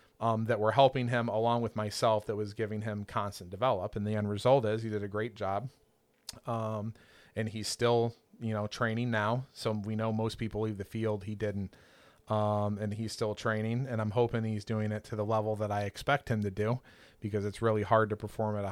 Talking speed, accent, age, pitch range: 225 wpm, American, 30-49, 105-120 Hz